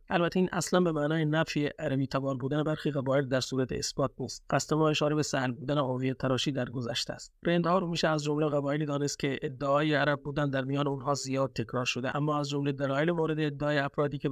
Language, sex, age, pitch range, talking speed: Persian, male, 30-49, 135-155 Hz, 215 wpm